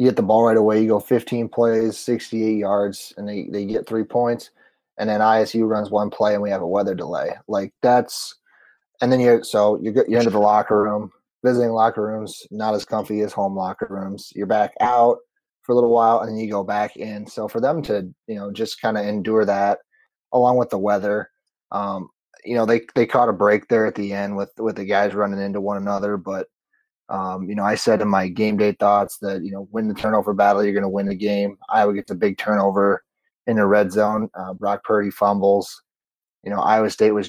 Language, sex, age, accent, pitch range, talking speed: English, male, 30-49, American, 100-110 Hz, 230 wpm